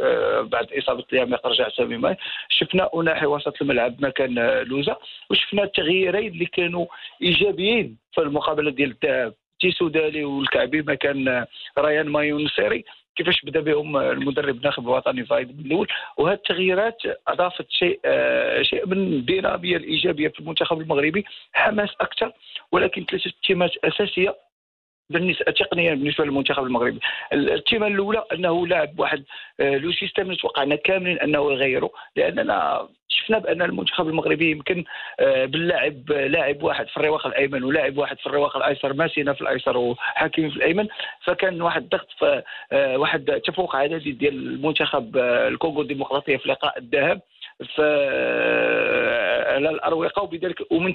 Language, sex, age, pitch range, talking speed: English, male, 50-69, 145-195 Hz, 130 wpm